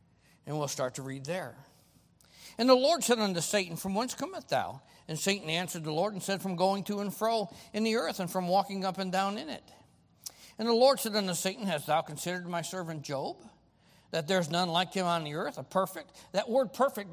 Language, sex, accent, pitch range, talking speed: English, male, American, 165-215 Hz, 230 wpm